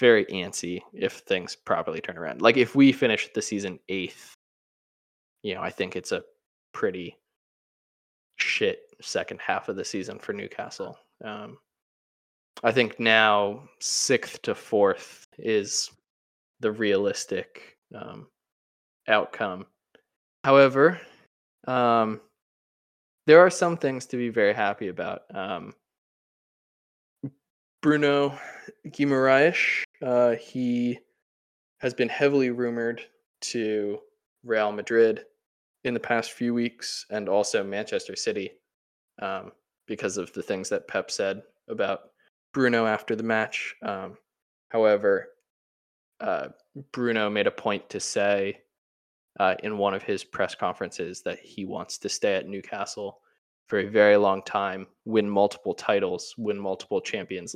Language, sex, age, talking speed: English, male, 20-39, 125 wpm